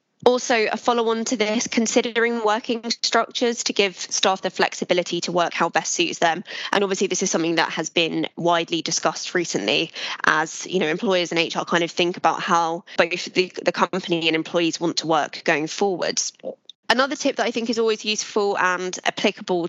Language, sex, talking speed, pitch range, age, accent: English, female, 190 wpm, 165-200 Hz, 20-39, British